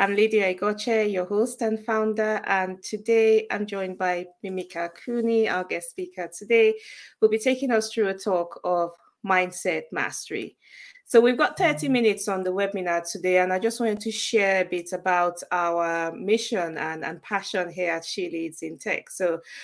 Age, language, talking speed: 20-39, English, 180 wpm